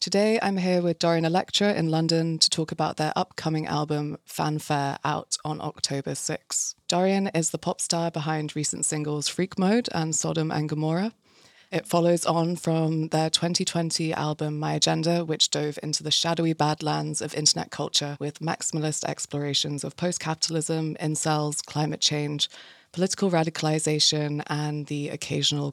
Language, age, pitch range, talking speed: English, 20-39, 150-170 Hz, 150 wpm